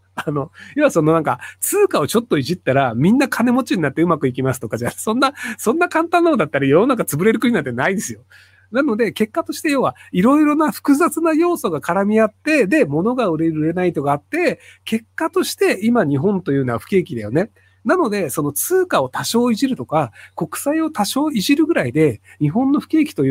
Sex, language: male, Japanese